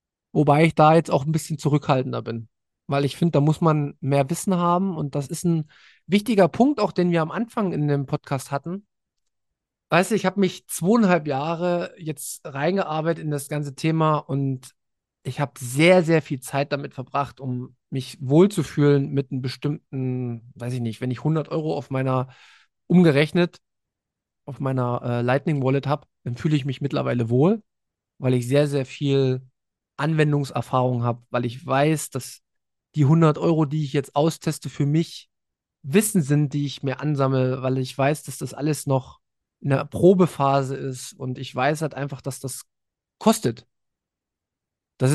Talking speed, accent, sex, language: 170 wpm, German, male, German